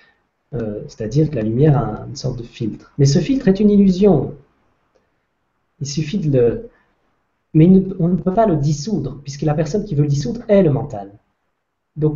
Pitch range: 135-190 Hz